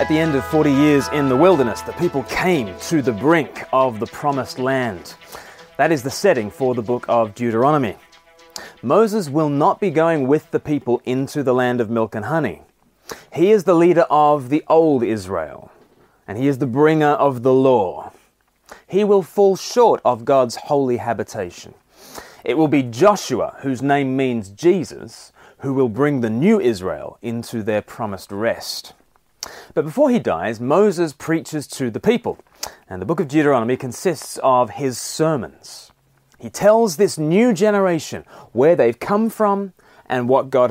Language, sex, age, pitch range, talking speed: English, male, 30-49, 120-165 Hz, 170 wpm